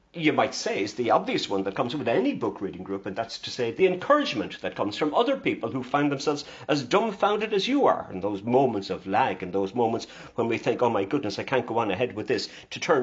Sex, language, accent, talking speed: male, English, British, 260 wpm